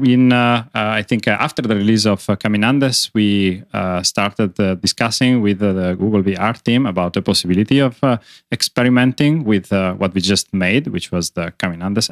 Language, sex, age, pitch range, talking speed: English, male, 30-49, 95-110 Hz, 190 wpm